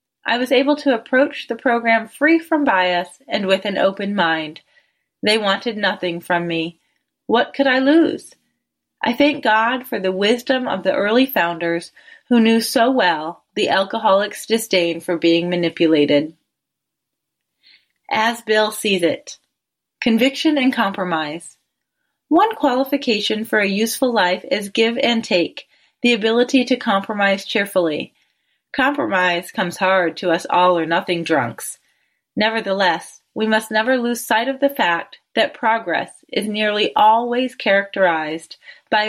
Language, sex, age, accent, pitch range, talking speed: English, female, 30-49, American, 185-250 Hz, 135 wpm